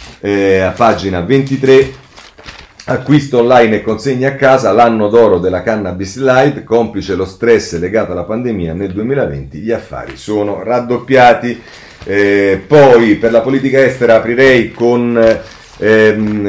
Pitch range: 95-120 Hz